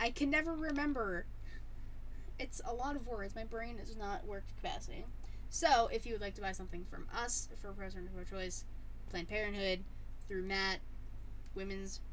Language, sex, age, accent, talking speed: English, female, 10-29, American, 175 wpm